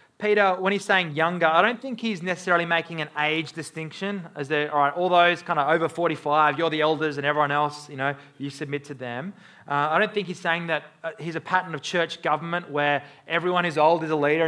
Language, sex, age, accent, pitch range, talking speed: English, male, 30-49, Australian, 150-190 Hz, 230 wpm